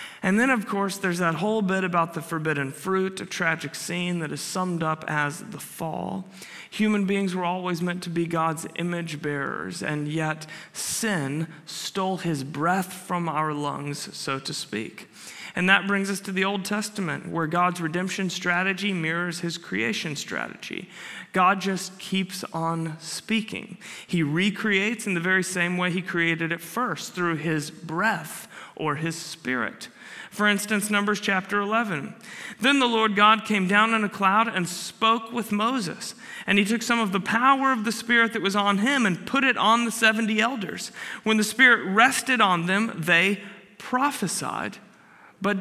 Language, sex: English, male